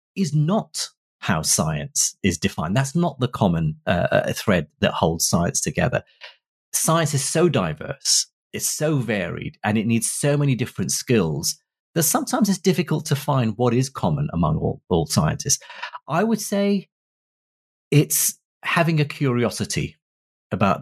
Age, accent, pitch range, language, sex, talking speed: 30-49, British, 115-160 Hz, English, male, 150 wpm